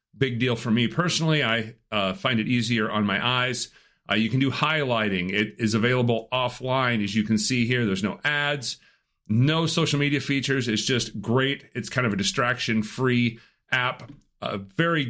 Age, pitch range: 40-59, 110-135 Hz